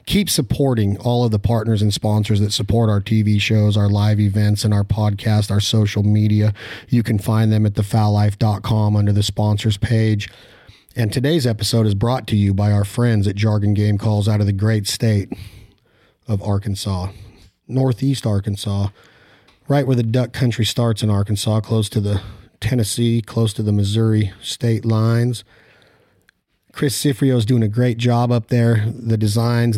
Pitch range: 105-115 Hz